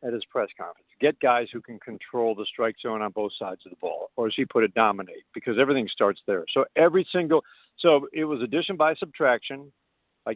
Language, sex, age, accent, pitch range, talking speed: English, male, 50-69, American, 115-150 Hz, 220 wpm